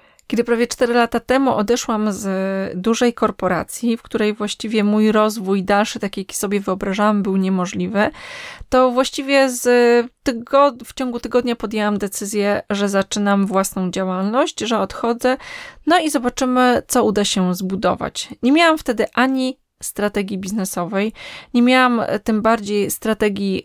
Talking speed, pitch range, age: 135 wpm, 200-250 Hz, 20-39